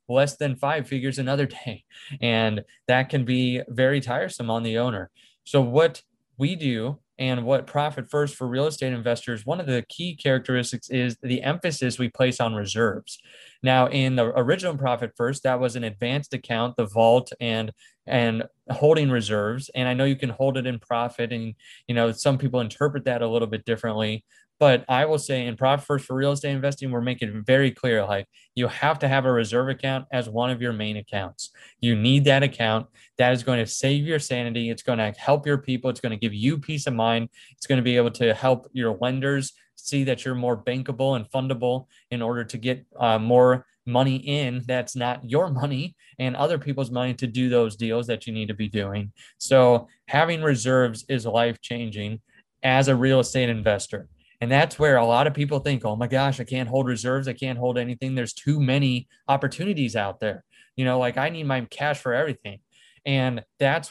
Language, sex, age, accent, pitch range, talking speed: English, male, 20-39, American, 120-135 Hz, 205 wpm